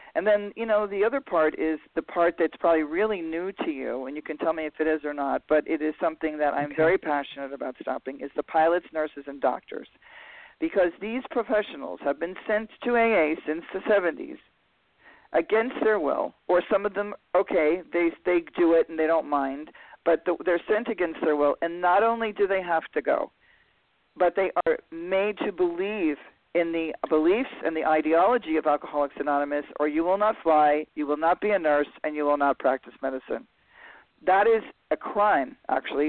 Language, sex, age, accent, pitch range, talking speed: English, male, 50-69, American, 150-195 Hz, 200 wpm